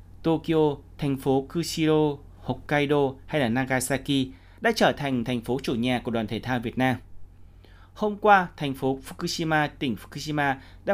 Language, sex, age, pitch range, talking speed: Vietnamese, male, 20-39, 115-150 Hz, 160 wpm